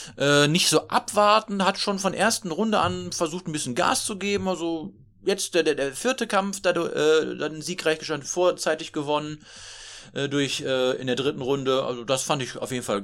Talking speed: 200 wpm